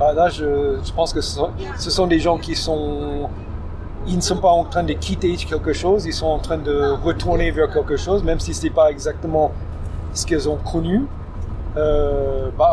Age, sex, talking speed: 40-59, male, 210 wpm